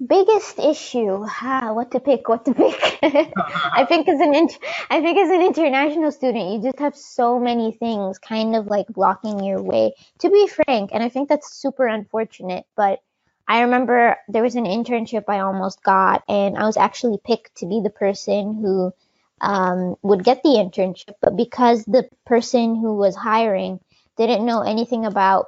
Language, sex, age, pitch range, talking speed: English, female, 20-39, 200-255 Hz, 170 wpm